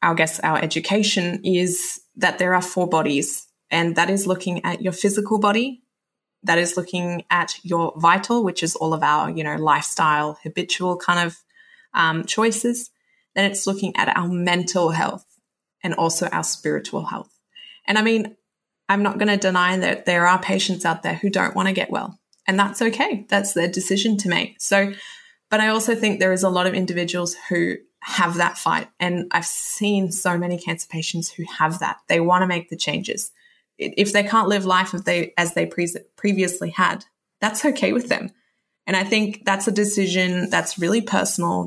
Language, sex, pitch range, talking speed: English, female, 170-205 Hz, 185 wpm